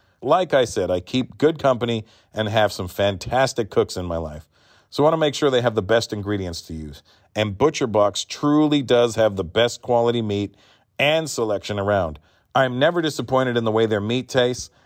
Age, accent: 40-59, American